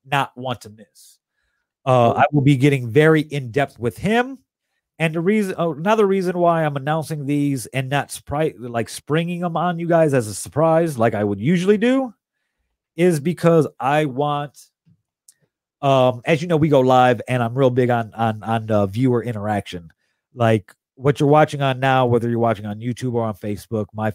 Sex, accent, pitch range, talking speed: male, American, 115-150 Hz, 185 wpm